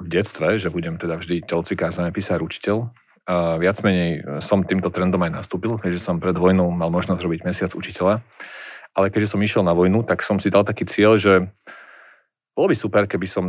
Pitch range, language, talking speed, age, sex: 90-100 Hz, Slovak, 200 wpm, 40-59, male